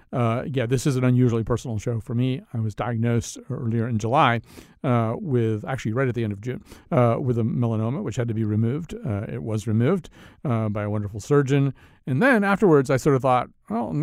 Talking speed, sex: 220 wpm, male